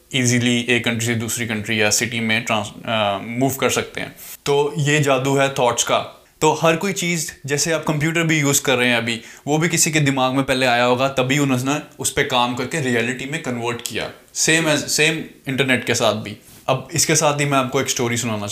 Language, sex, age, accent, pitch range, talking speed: Hindi, male, 20-39, native, 115-145 Hz, 215 wpm